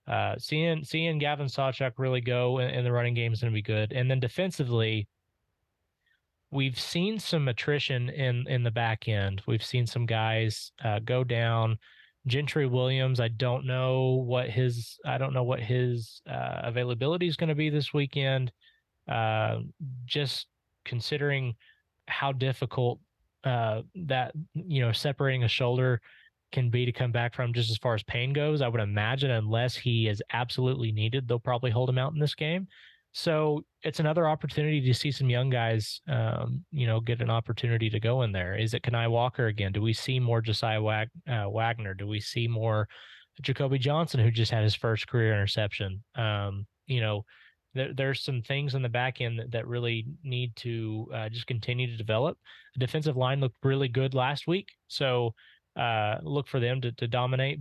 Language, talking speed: English, 185 wpm